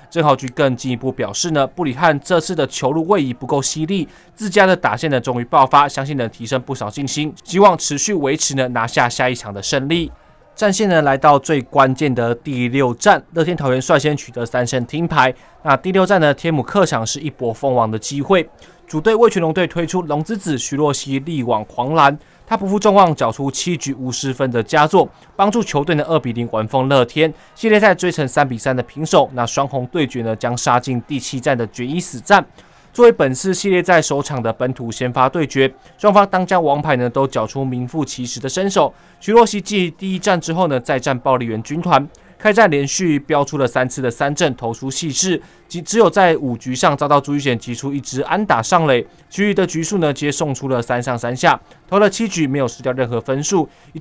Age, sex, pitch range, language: 20-39, male, 130-170 Hz, Chinese